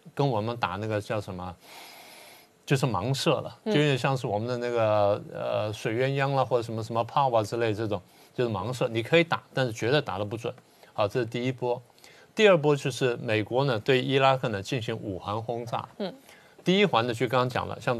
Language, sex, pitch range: Chinese, male, 110-140 Hz